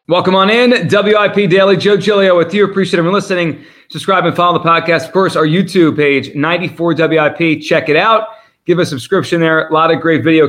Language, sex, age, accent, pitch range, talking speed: English, male, 30-49, American, 140-175 Hz, 200 wpm